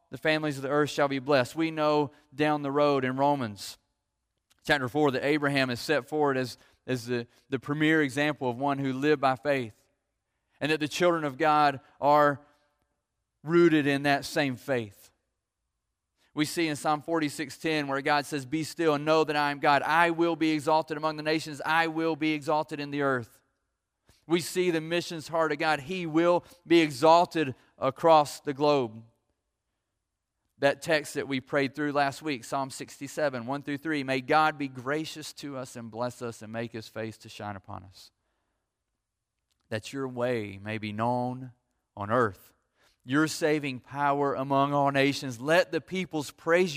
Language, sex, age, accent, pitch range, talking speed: English, male, 30-49, American, 130-160 Hz, 175 wpm